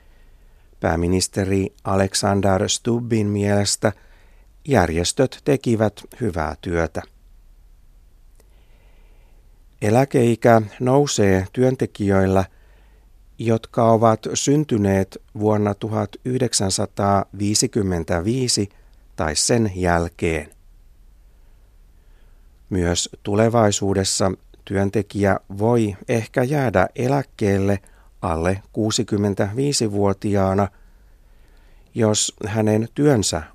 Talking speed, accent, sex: 55 wpm, native, male